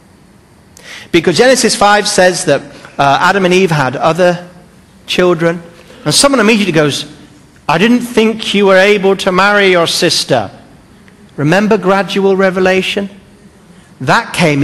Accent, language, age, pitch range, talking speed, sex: British, English, 40-59, 165-215 Hz, 125 wpm, male